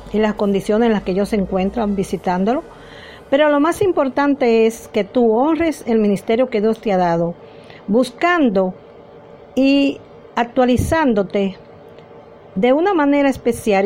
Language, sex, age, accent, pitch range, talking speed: Spanish, female, 50-69, American, 180-265 Hz, 140 wpm